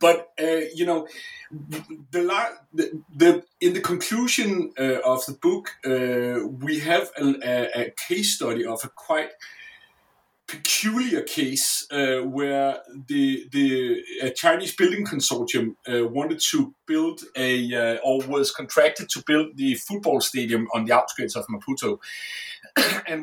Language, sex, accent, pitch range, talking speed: English, male, Danish, 130-210 Hz, 140 wpm